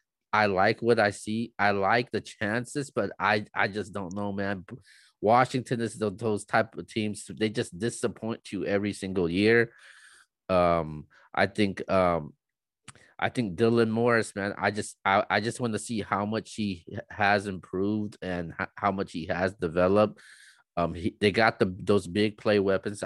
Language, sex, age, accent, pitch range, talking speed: English, male, 20-39, American, 95-115 Hz, 170 wpm